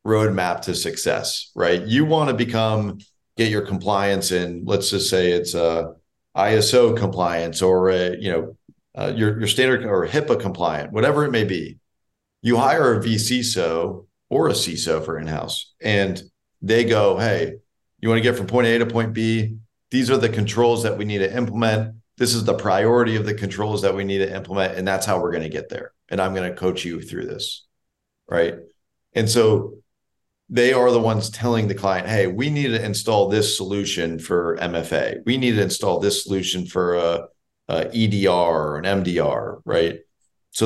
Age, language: 40-59, English